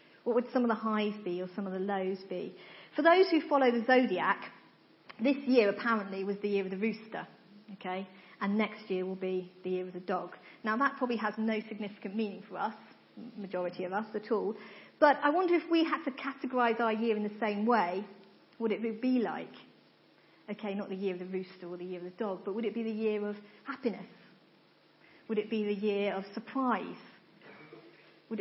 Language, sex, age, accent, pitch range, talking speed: English, female, 40-59, British, 200-245 Hz, 215 wpm